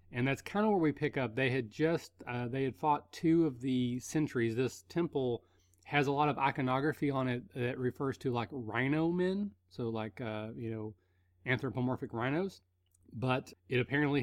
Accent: American